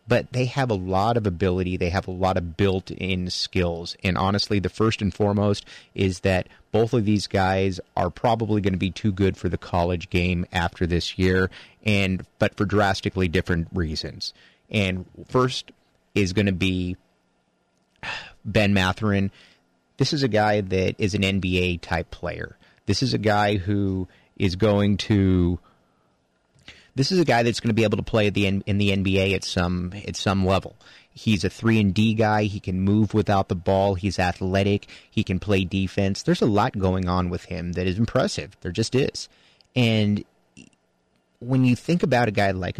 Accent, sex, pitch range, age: American, male, 90-110 Hz, 30-49